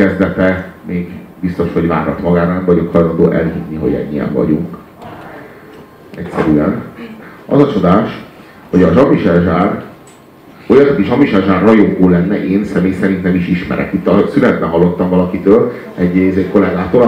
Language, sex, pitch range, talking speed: Hungarian, male, 90-115 Hz, 130 wpm